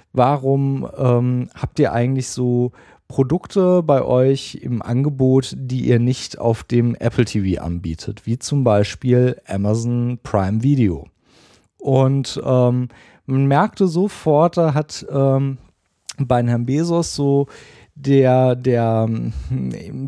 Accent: German